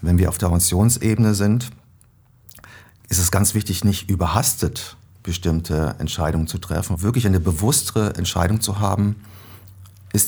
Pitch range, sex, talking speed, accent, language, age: 90-110 Hz, male, 135 wpm, German, German, 40-59